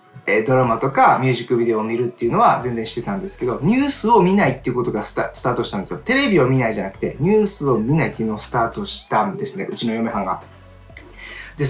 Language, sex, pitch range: Japanese, male, 125-200 Hz